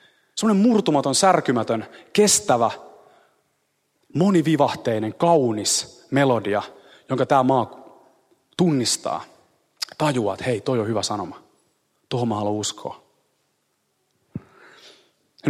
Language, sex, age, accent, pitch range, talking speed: Finnish, male, 30-49, native, 125-175 Hz, 85 wpm